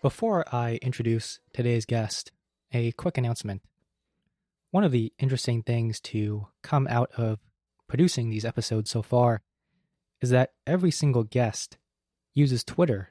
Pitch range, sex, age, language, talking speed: 110-125 Hz, male, 20-39, English, 135 wpm